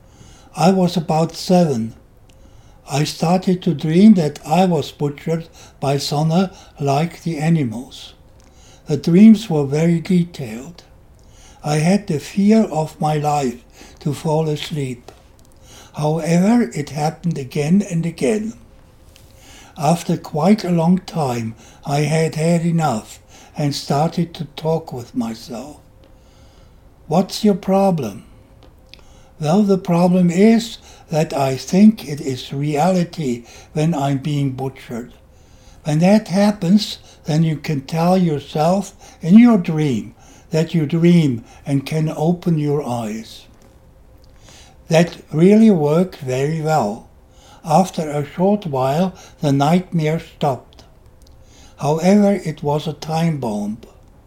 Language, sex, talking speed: English, male, 120 wpm